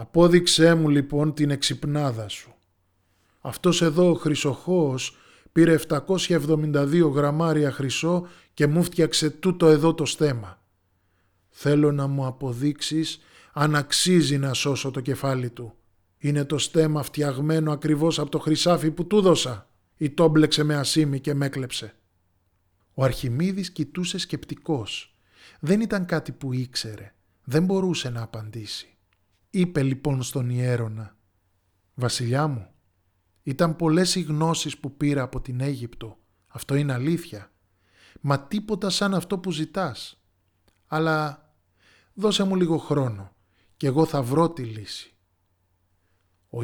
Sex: male